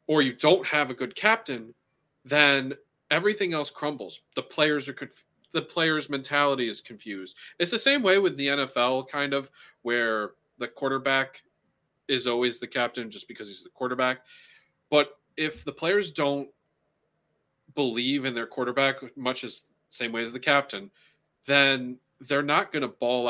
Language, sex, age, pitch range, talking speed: English, male, 30-49, 120-150 Hz, 160 wpm